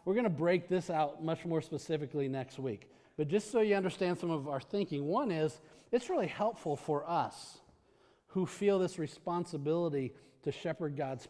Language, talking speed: English, 180 wpm